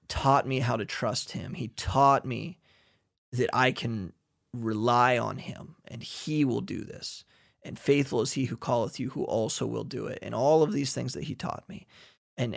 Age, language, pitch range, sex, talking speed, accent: 30-49, English, 115-155 Hz, male, 200 wpm, American